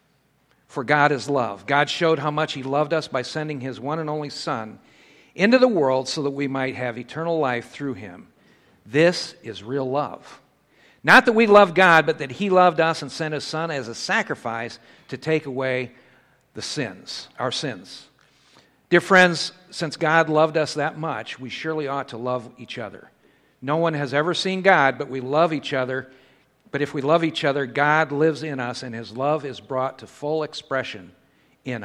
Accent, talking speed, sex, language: American, 195 wpm, male, English